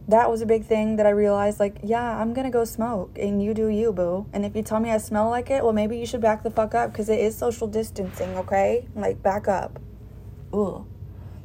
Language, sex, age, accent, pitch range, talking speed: English, female, 20-39, American, 195-225 Hz, 240 wpm